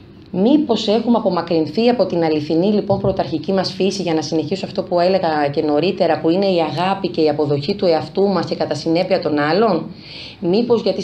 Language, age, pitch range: Greek, 30-49, 160-210 Hz